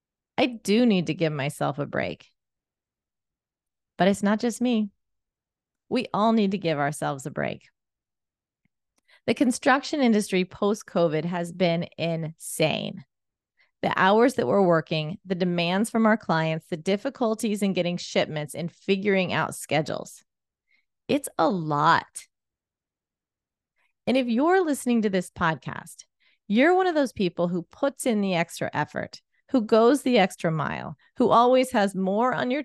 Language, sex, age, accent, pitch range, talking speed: English, female, 30-49, American, 165-225 Hz, 145 wpm